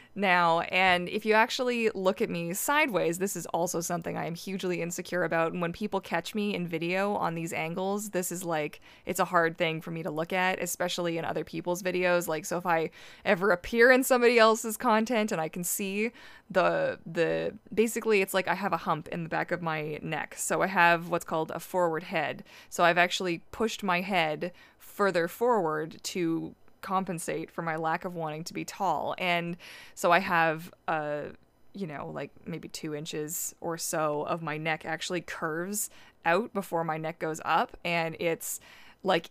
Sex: female